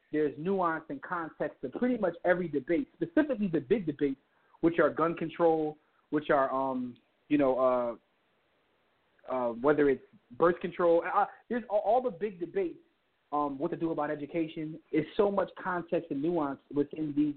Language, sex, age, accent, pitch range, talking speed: English, male, 30-49, American, 145-175 Hz, 165 wpm